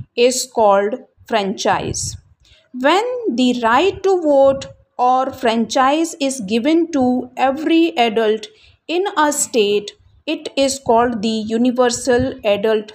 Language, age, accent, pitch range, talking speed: English, 50-69, Indian, 230-290 Hz, 110 wpm